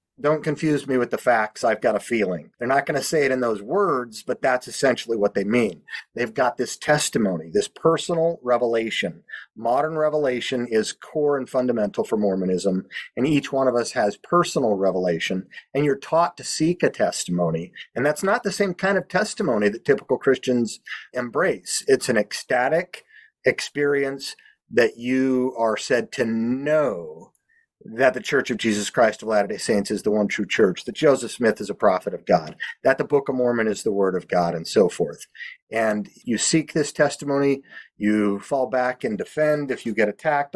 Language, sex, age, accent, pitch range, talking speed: English, male, 40-59, American, 110-150 Hz, 185 wpm